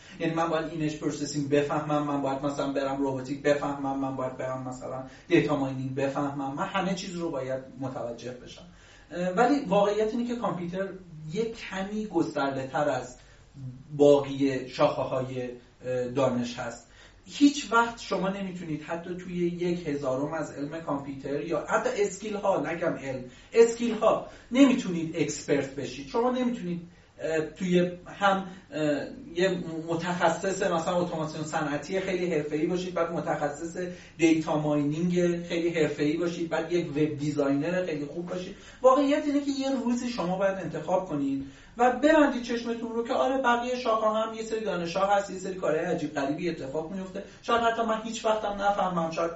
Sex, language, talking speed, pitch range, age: male, Persian, 150 wpm, 145-195 Hz, 30-49